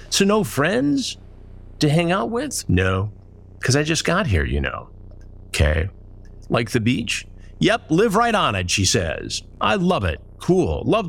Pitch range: 90-125 Hz